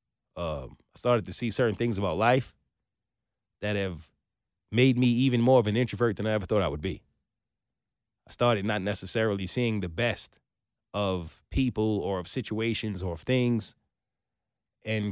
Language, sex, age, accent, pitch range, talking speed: English, male, 20-39, American, 105-140 Hz, 165 wpm